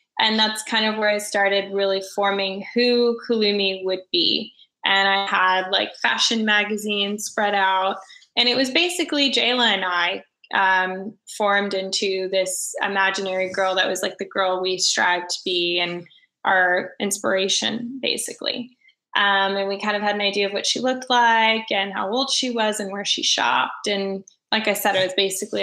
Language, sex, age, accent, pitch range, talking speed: English, female, 10-29, American, 195-225 Hz, 180 wpm